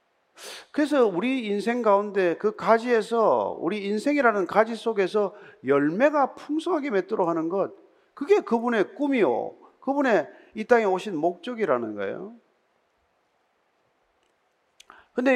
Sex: male